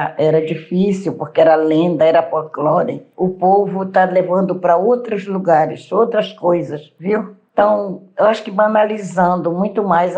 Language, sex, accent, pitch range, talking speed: Portuguese, female, Brazilian, 175-210 Hz, 140 wpm